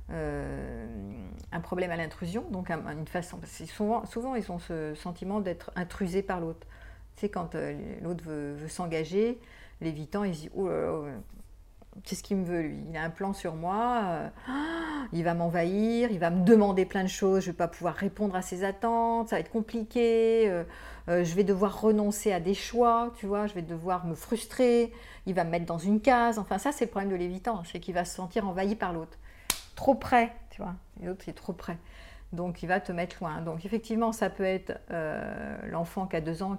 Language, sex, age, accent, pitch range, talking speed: French, female, 50-69, French, 170-215 Hz, 220 wpm